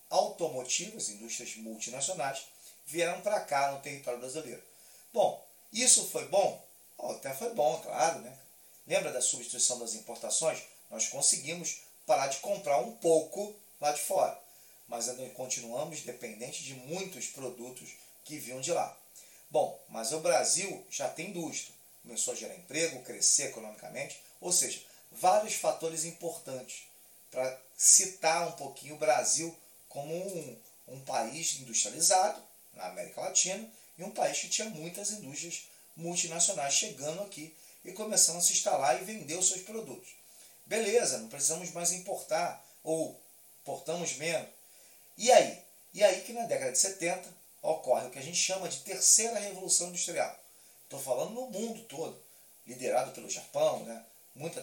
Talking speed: 145 wpm